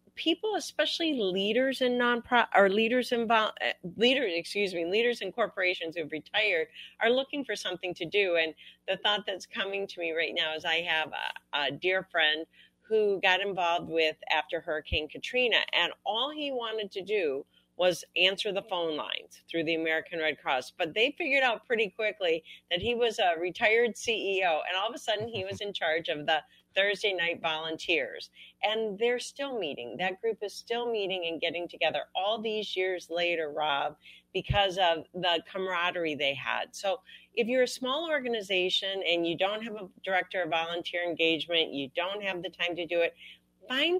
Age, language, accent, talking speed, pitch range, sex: 40-59, English, American, 185 wpm, 165-225 Hz, female